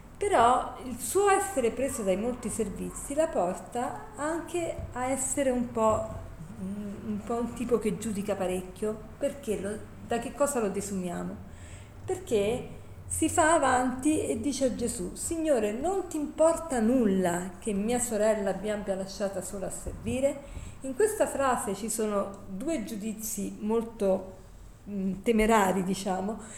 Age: 40-59